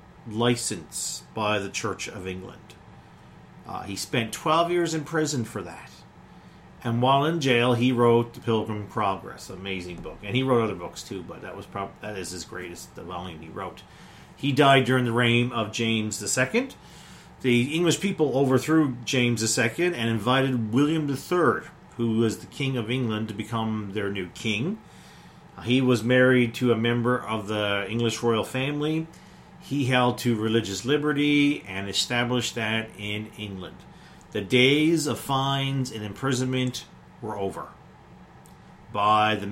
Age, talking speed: 40-59, 160 wpm